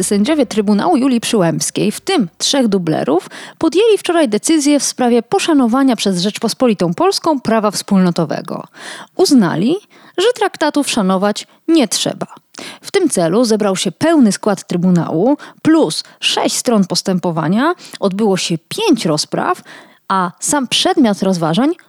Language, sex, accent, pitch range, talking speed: Polish, female, native, 195-325 Hz, 125 wpm